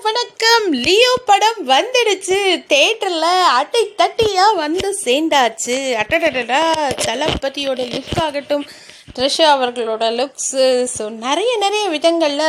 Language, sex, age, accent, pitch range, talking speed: Tamil, female, 30-49, native, 255-340 Hz, 95 wpm